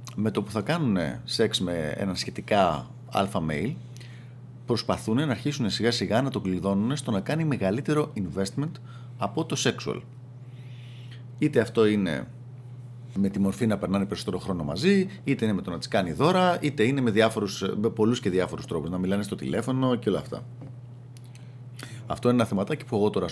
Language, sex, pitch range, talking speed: Greek, male, 110-130 Hz, 180 wpm